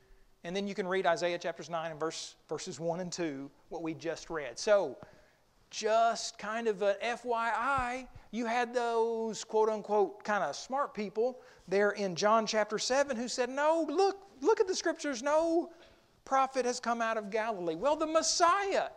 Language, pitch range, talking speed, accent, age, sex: English, 190-285 Hz, 170 wpm, American, 40-59, male